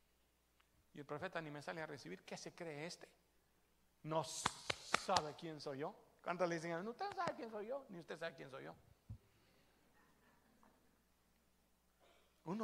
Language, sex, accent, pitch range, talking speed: Spanish, male, Mexican, 115-180 Hz, 160 wpm